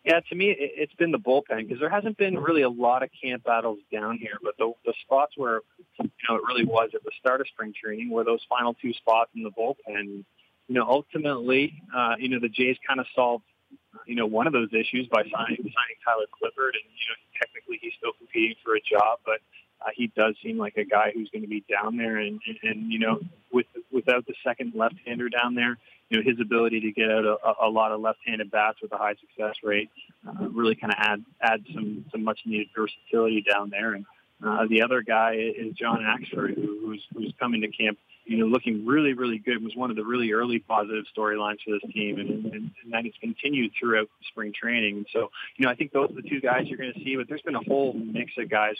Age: 30-49